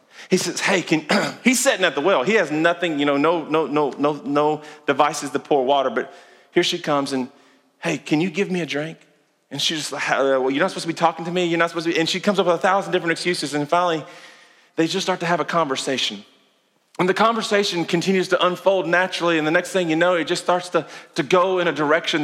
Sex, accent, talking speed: male, American, 250 wpm